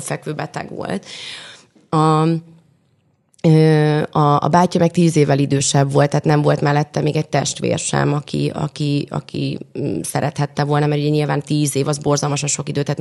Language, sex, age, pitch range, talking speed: Hungarian, female, 30-49, 145-165 Hz, 155 wpm